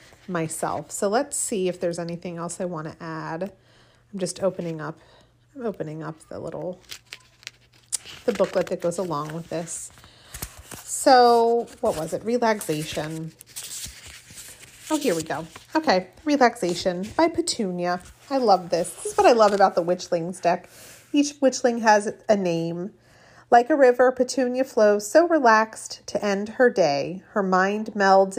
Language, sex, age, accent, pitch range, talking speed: English, female, 30-49, American, 175-225 Hz, 150 wpm